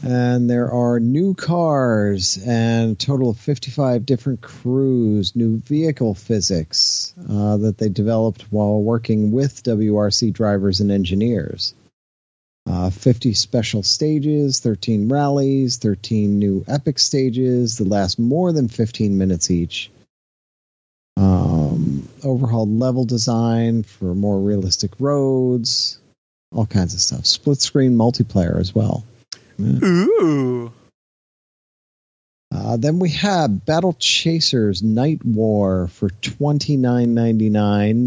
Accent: American